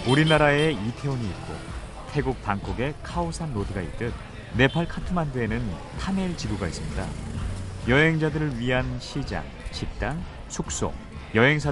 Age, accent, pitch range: 30-49, native, 95-130 Hz